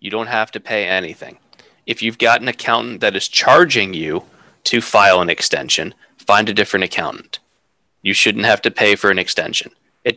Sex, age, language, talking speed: male, 20-39, English, 190 wpm